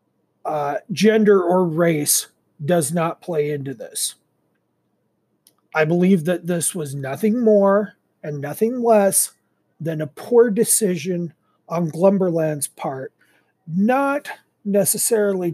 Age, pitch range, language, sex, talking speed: 40-59, 155-200 Hz, English, male, 110 wpm